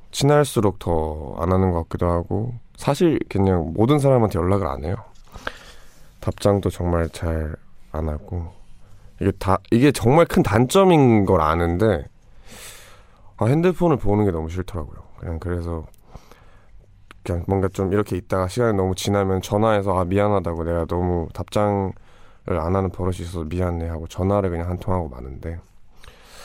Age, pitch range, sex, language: 20-39, 90-115 Hz, male, Korean